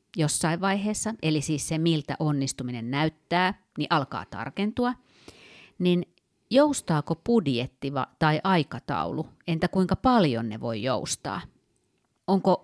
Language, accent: Finnish, native